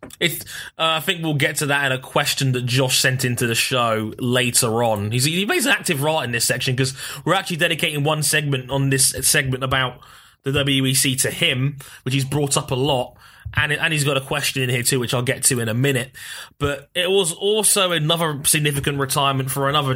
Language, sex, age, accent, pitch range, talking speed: English, male, 20-39, British, 125-145 Hz, 220 wpm